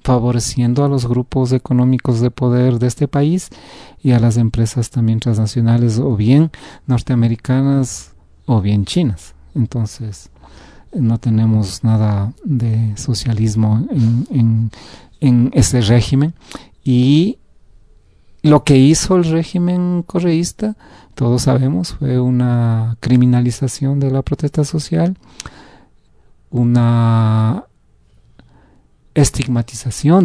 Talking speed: 100 wpm